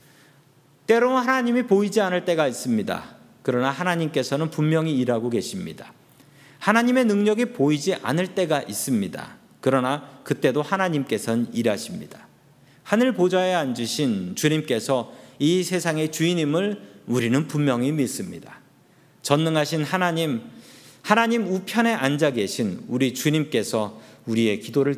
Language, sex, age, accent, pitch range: Korean, male, 40-59, native, 130-175 Hz